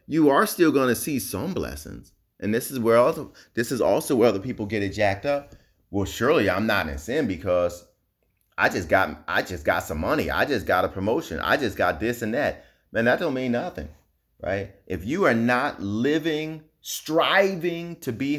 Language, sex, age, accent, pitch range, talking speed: English, male, 30-49, American, 100-145 Hz, 205 wpm